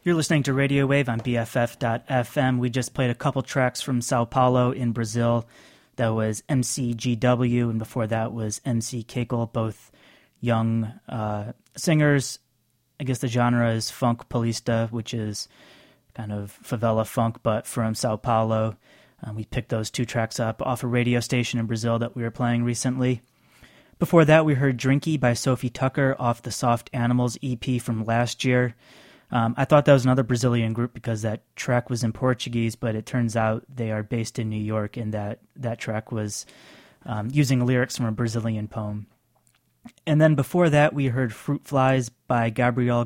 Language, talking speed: English, 180 wpm